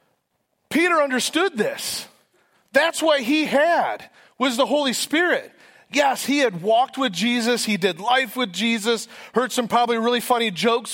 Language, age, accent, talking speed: English, 30-49, American, 155 wpm